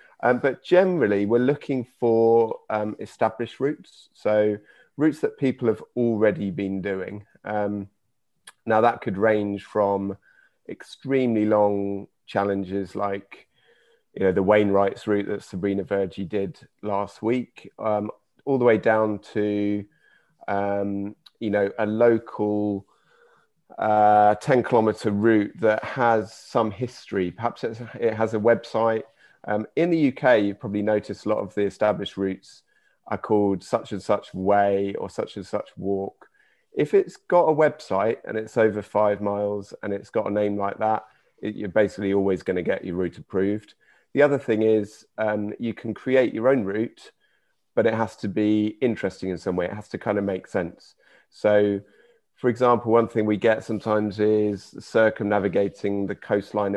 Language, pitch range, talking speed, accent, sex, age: English, 100-115 Hz, 160 wpm, British, male, 30-49